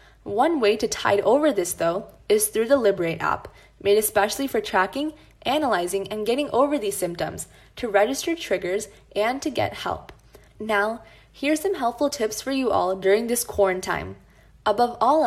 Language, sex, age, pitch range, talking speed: English, female, 20-39, 200-275 Hz, 165 wpm